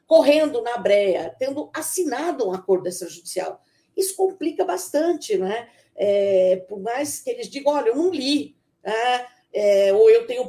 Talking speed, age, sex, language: 155 wpm, 50-69, female, Portuguese